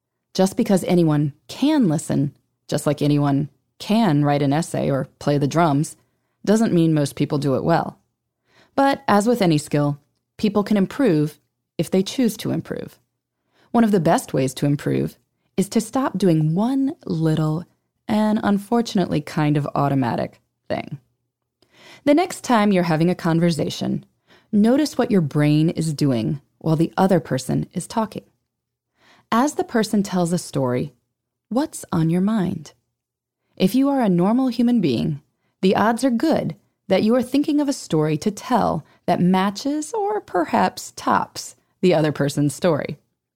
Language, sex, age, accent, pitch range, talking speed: English, female, 20-39, American, 150-230 Hz, 155 wpm